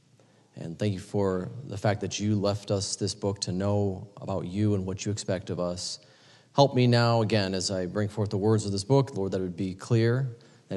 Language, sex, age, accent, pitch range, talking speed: English, male, 30-49, American, 100-145 Hz, 235 wpm